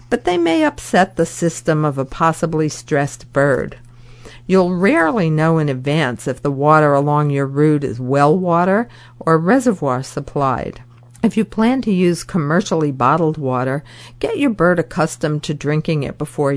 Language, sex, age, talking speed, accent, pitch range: English, female, 50-69, 160 wpm, American, 140-190 Hz